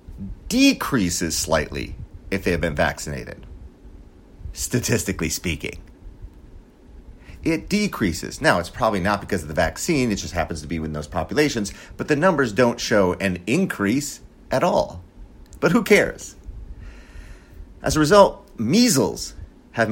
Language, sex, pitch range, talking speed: English, male, 85-125 Hz, 135 wpm